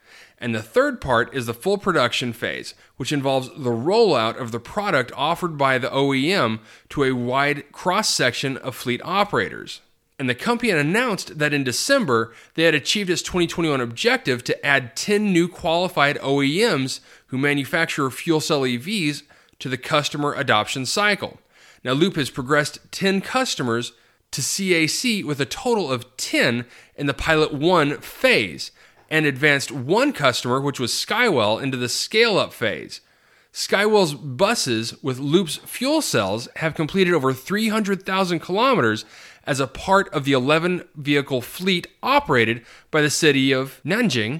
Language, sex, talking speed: English, male, 150 wpm